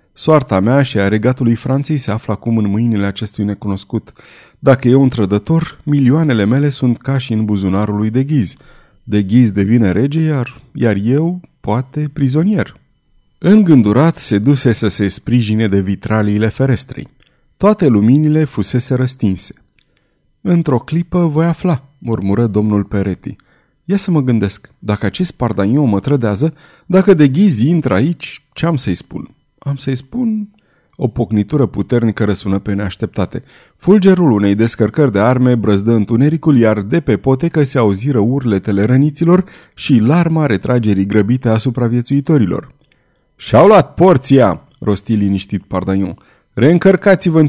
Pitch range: 105-150 Hz